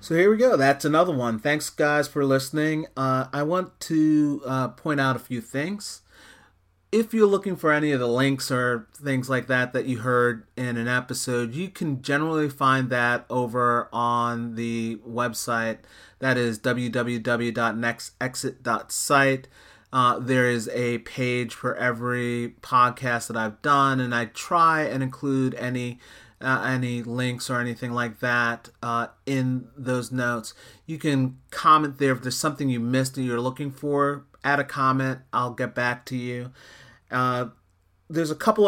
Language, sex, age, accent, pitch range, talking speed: English, male, 30-49, American, 120-135 Hz, 160 wpm